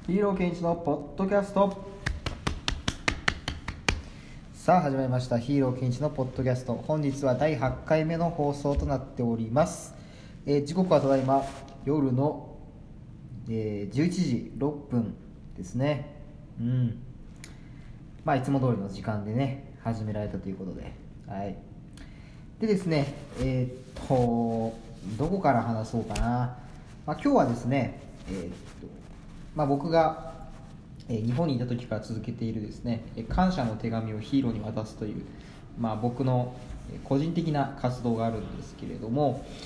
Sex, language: male, Japanese